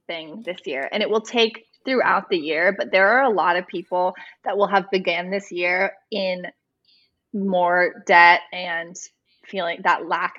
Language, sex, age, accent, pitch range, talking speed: English, female, 20-39, American, 175-210 Hz, 175 wpm